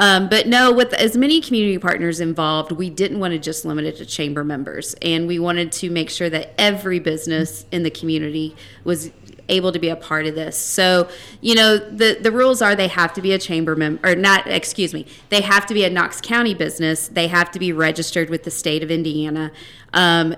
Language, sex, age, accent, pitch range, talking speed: English, female, 30-49, American, 160-195 Hz, 225 wpm